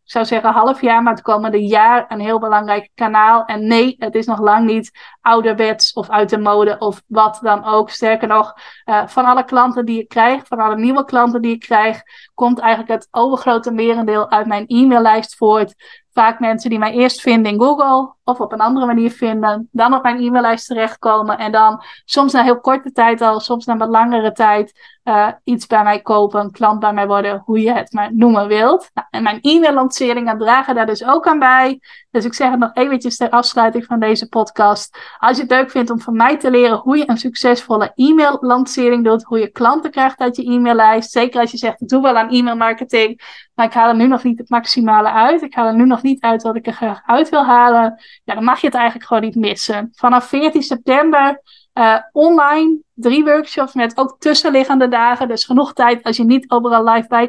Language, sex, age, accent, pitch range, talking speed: Dutch, female, 20-39, Dutch, 220-255 Hz, 220 wpm